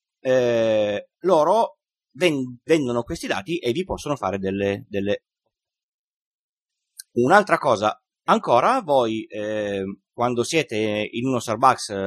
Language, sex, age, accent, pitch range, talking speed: Italian, male, 30-49, native, 110-170 Hz, 105 wpm